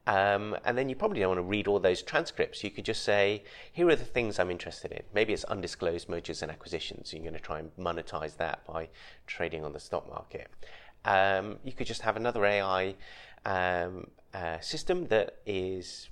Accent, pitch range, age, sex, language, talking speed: British, 90-110 Hz, 30-49, male, English, 200 wpm